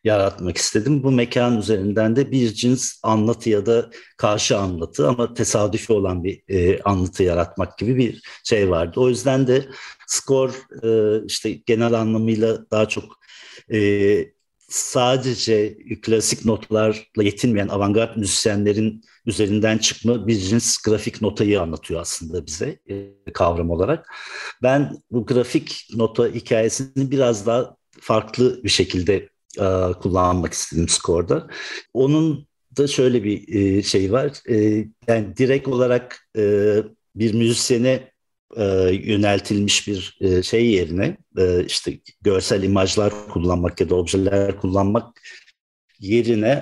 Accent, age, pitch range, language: native, 50-69, 100-120 Hz, Turkish